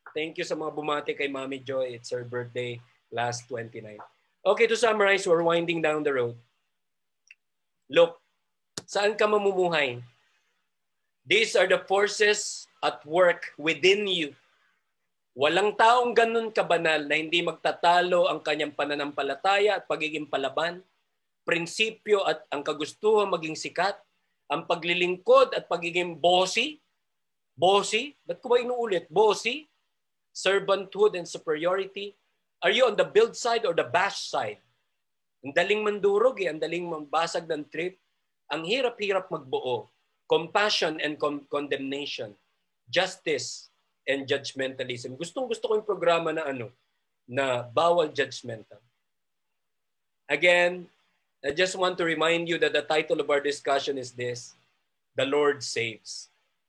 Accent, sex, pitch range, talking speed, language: native, male, 150-205 Hz, 130 wpm, Filipino